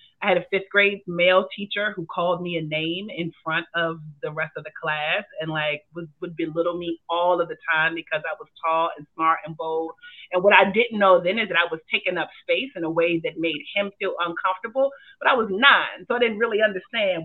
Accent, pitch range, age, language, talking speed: American, 165-205 Hz, 30-49, English, 235 wpm